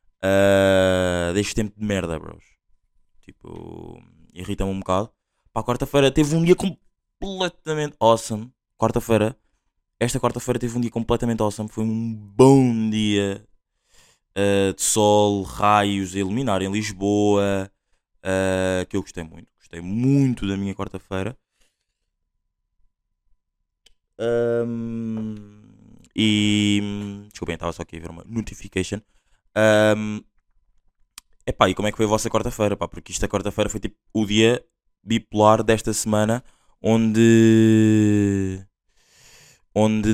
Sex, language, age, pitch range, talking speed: male, Portuguese, 20-39, 95-115 Hz, 120 wpm